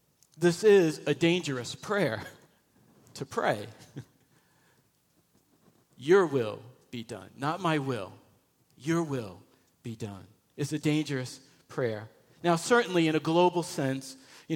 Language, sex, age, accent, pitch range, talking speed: English, male, 50-69, American, 130-165 Hz, 120 wpm